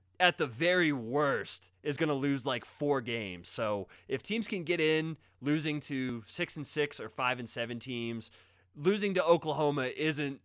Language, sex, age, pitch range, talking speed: English, male, 20-39, 115-150 Hz, 180 wpm